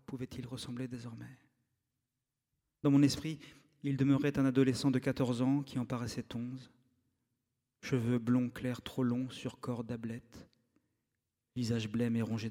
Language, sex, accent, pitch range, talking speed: French, male, French, 120-135 Hz, 140 wpm